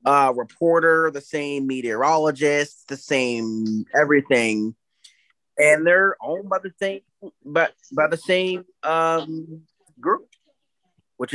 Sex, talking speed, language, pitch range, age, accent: male, 115 wpm, English, 135-175 Hz, 20-39, American